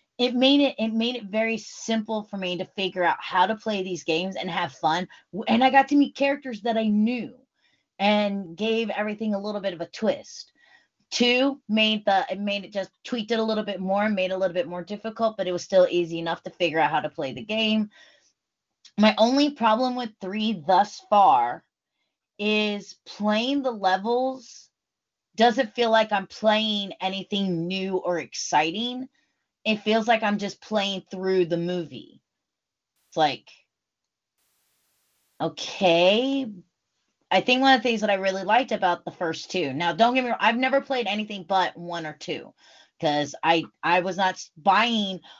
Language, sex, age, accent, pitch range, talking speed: English, female, 20-39, American, 170-225 Hz, 185 wpm